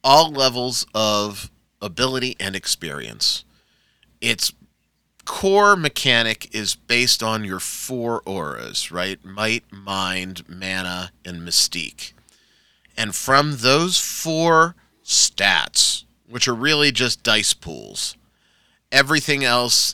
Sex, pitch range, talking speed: male, 100-125 Hz, 100 wpm